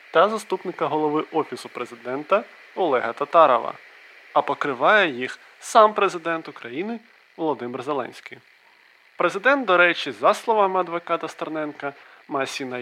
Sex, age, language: male, 20-39, Ukrainian